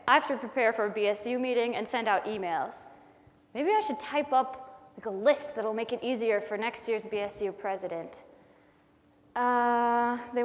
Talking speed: 180 wpm